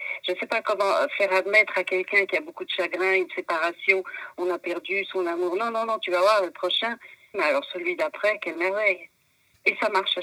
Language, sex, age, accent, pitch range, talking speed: French, female, 50-69, French, 170-285 Hz, 230 wpm